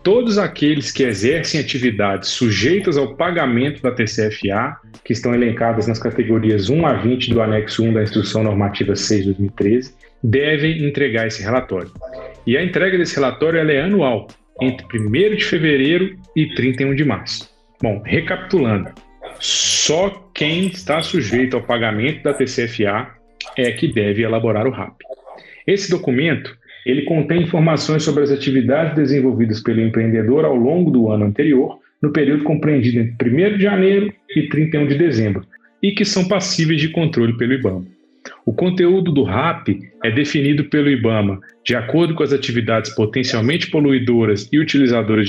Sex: male